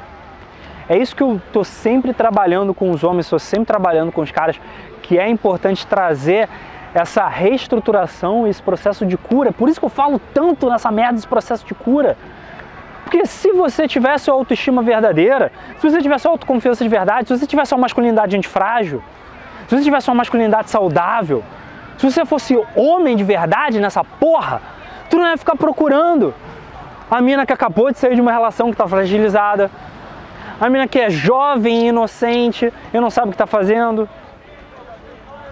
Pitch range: 190-255 Hz